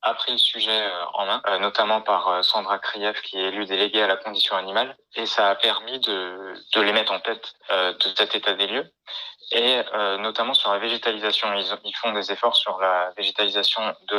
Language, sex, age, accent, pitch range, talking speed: French, male, 20-39, French, 100-115 Hz, 205 wpm